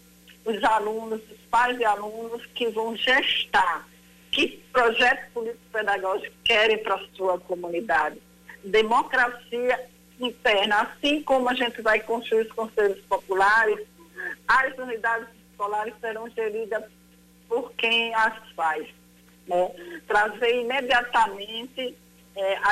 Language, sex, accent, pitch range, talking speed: Portuguese, female, Brazilian, 195-235 Hz, 105 wpm